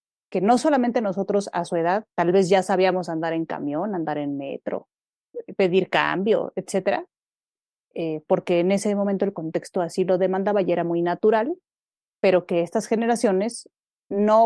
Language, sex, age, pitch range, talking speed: Spanish, female, 30-49, 180-230 Hz, 160 wpm